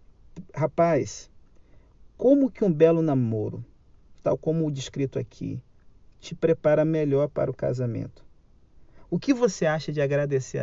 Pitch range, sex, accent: 125-160 Hz, male, Brazilian